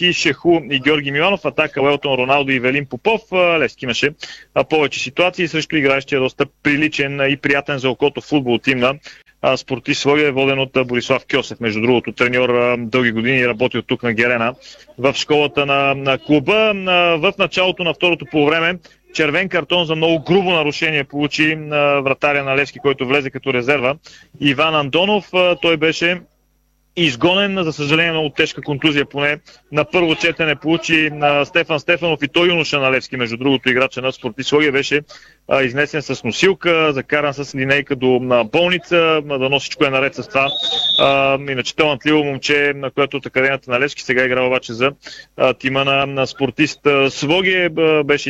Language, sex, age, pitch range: Bulgarian, male, 30-49, 130-155 Hz